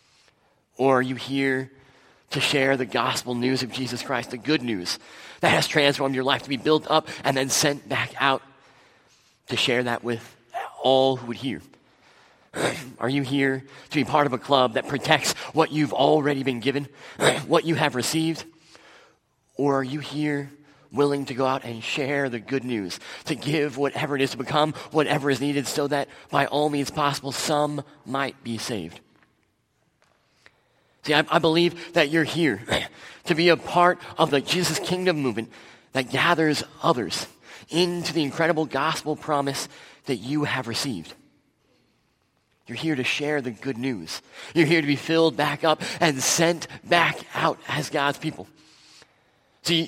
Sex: male